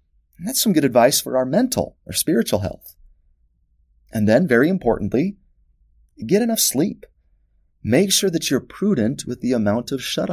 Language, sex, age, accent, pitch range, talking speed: English, male, 30-49, American, 75-130 Hz, 165 wpm